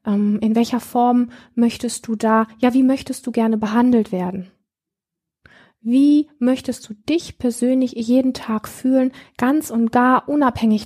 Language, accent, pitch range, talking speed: German, German, 215-250 Hz, 140 wpm